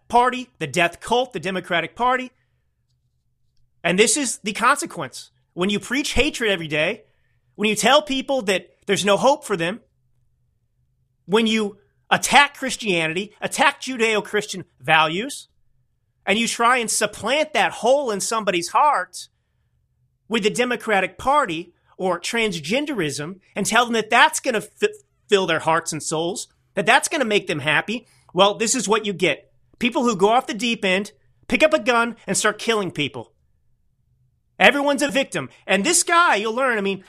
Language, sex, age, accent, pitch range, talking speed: English, male, 30-49, American, 155-230 Hz, 165 wpm